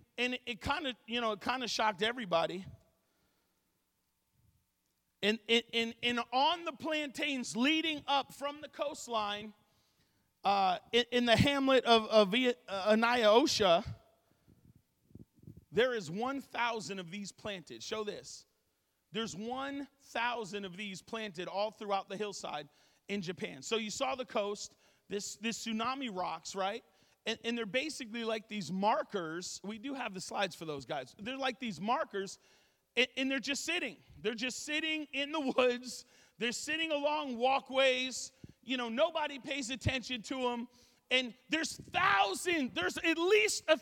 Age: 40-59